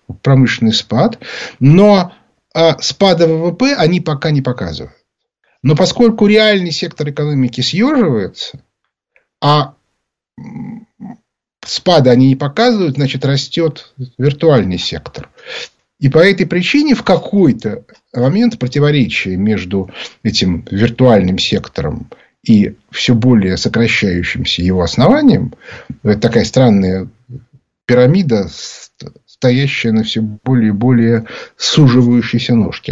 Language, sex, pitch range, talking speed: Russian, male, 115-165 Hz, 100 wpm